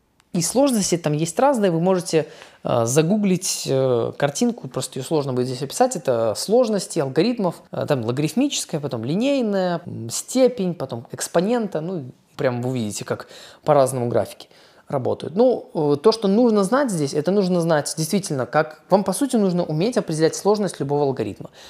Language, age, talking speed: Russian, 20-39, 145 wpm